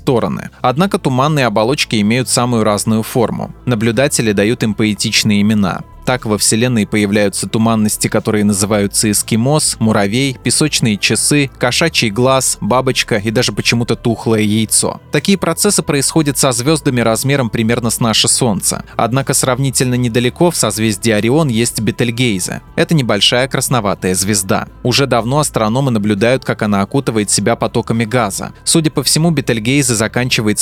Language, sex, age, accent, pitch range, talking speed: Russian, male, 20-39, native, 110-135 Hz, 135 wpm